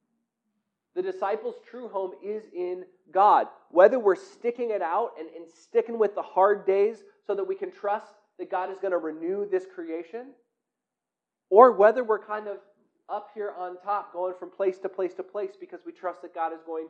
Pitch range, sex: 160-245 Hz, male